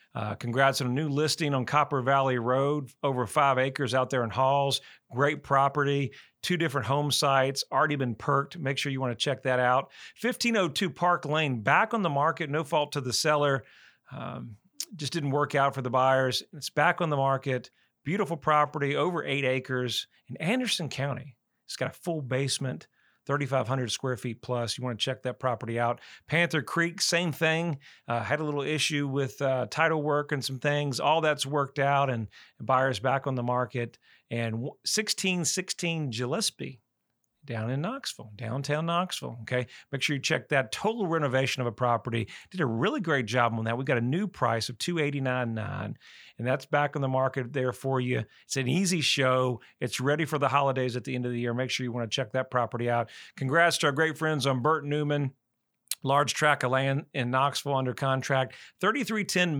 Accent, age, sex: American, 40-59, male